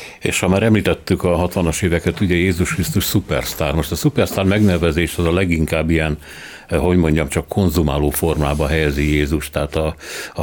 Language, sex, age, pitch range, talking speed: Hungarian, male, 60-79, 75-95 Hz, 165 wpm